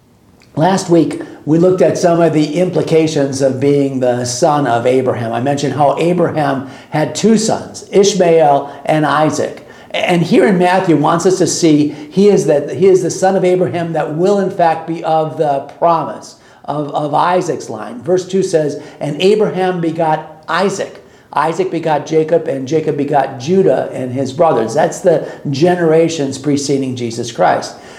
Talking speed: 165 wpm